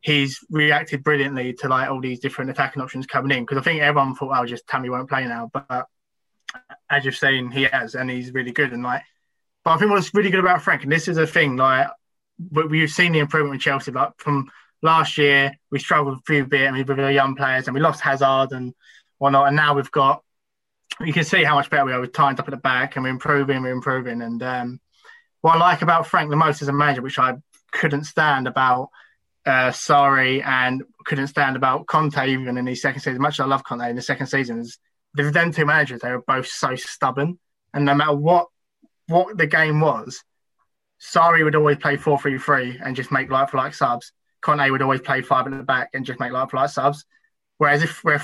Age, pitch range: 20-39, 130-150 Hz